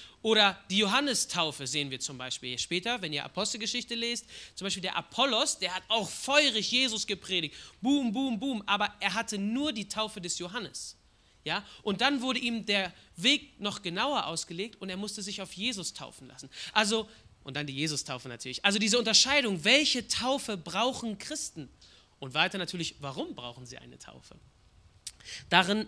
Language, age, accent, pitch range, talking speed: German, 30-49, German, 185-245 Hz, 170 wpm